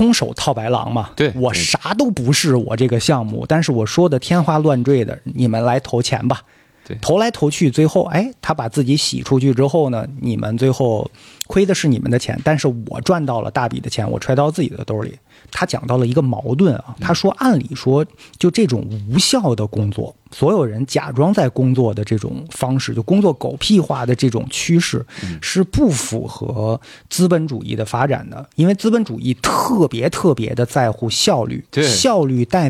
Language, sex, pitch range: Chinese, male, 120-160 Hz